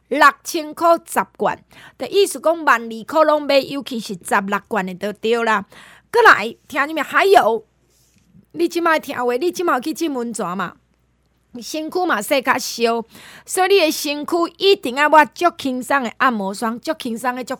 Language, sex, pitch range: Chinese, female, 220-305 Hz